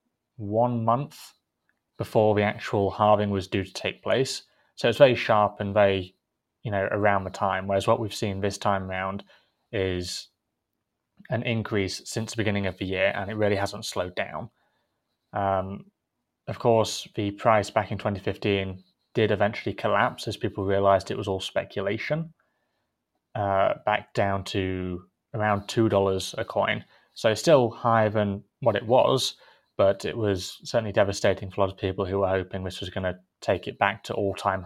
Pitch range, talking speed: 95-110 Hz, 175 wpm